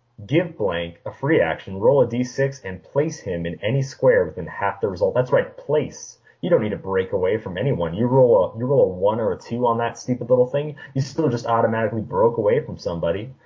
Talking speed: 230 wpm